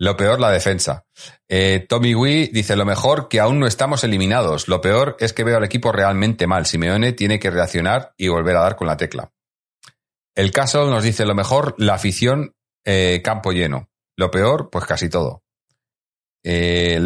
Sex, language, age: male, Spanish, 30-49